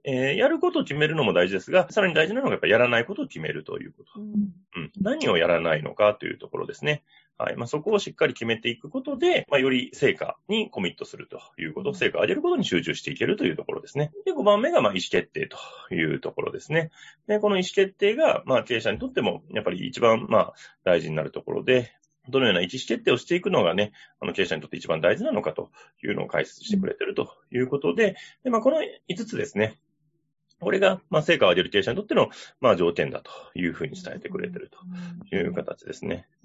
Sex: male